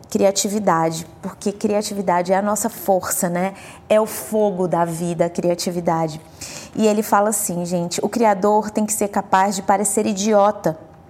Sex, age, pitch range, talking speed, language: female, 20-39, 185-225 Hz, 155 wpm, Portuguese